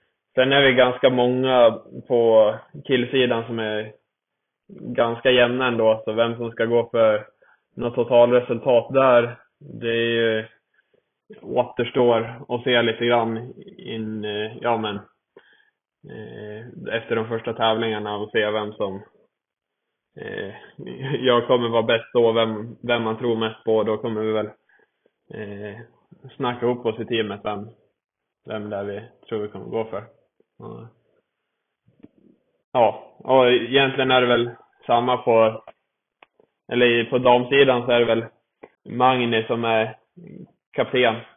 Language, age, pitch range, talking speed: Swedish, 20-39, 110-125 Hz, 130 wpm